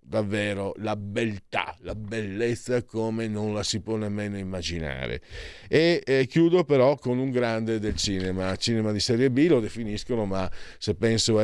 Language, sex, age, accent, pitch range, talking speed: Italian, male, 40-59, native, 105-135 Hz, 165 wpm